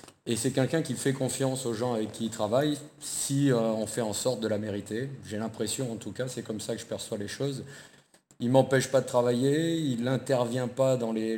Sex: male